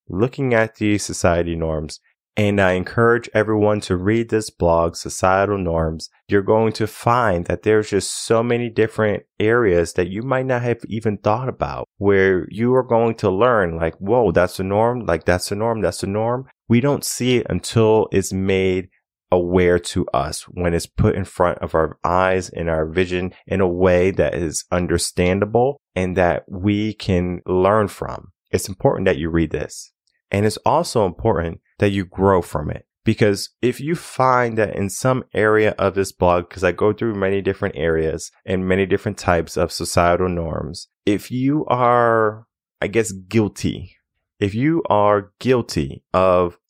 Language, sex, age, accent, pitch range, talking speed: English, male, 20-39, American, 90-115 Hz, 175 wpm